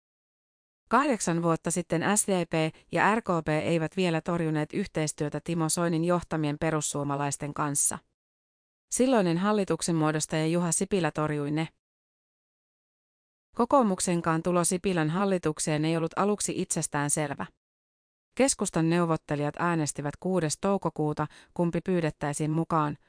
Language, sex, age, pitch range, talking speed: Finnish, female, 30-49, 155-185 Hz, 100 wpm